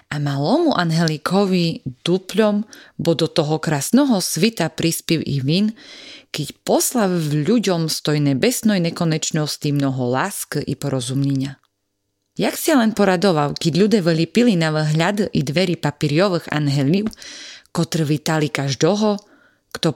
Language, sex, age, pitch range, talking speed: Slovak, female, 30-49, 145-205 Hz, 125 wpm